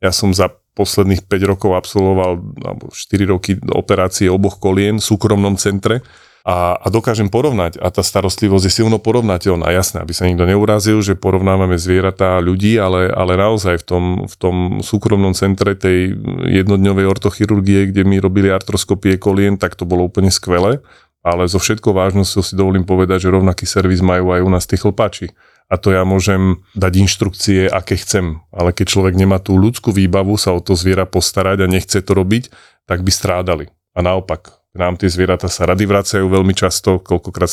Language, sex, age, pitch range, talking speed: Slovak, male, 30-49, 90-100 Hz, 180 wpm